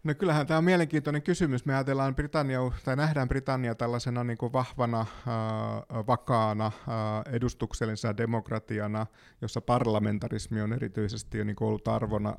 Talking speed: 140 wpm